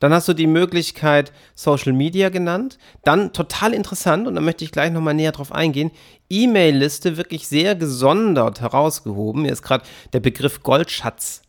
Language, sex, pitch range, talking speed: German, male, 130-160 Hz, 165 wpm